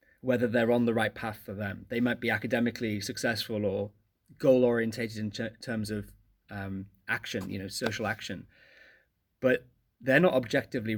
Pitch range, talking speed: 100-125 Hz, 165 wpm